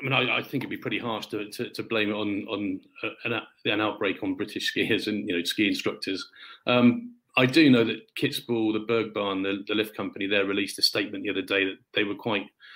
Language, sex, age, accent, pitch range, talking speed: English, male, 40-59, British, 95-110 Hz, 240 wpm